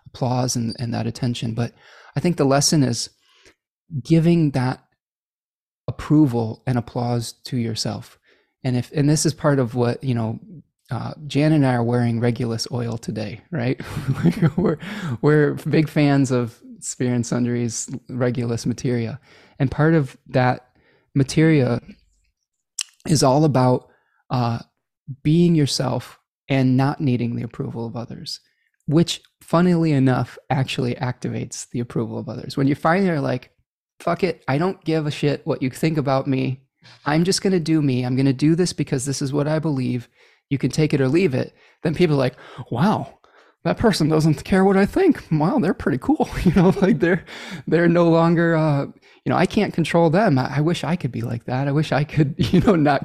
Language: English